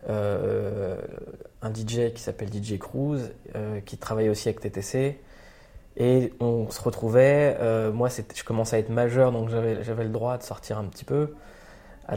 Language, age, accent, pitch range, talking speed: French, 20-39, French, 110-130 Hz, 180 wpm